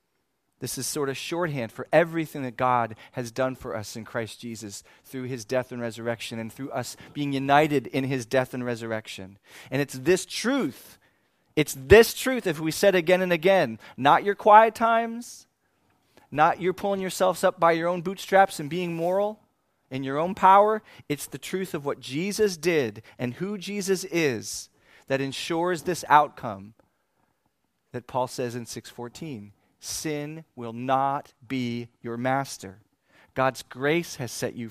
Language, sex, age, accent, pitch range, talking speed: English, male, 30-49, American, 125-180 Hz, 165 wpm